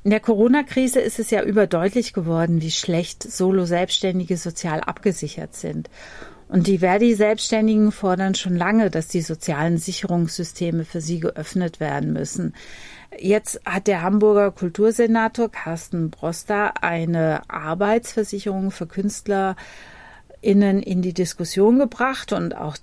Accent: German